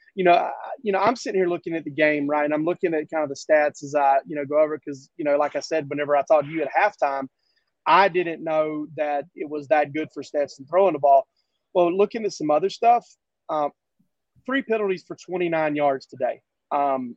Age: 30-49